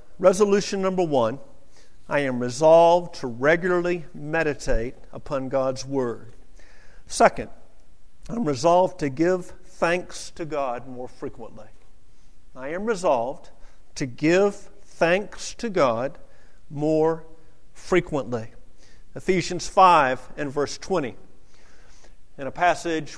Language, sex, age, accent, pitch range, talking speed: English, male, 50-69, American, 140-180 Hz, 105 wpm